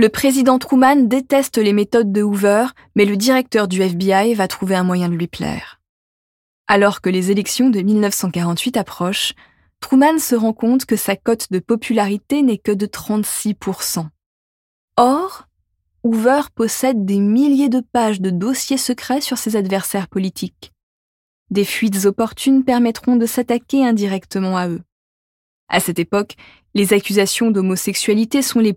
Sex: female